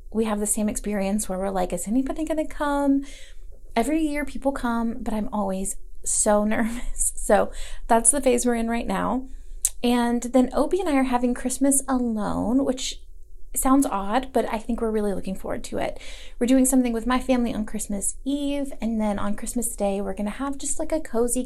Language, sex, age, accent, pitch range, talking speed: English, female, 30-49, American, 210-265 Hz, 205 wpm